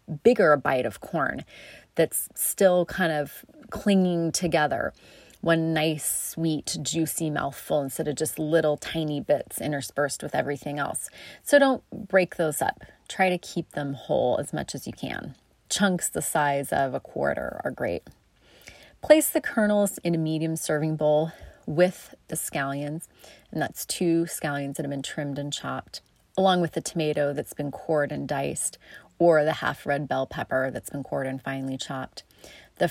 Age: 30-49